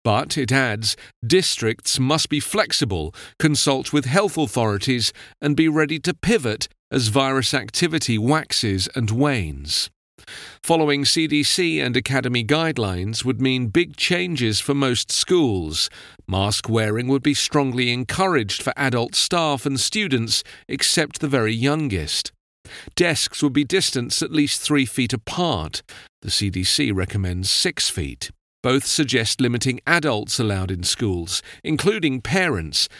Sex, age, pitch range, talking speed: male, 40-59, 110-155 Hz, 130 wpm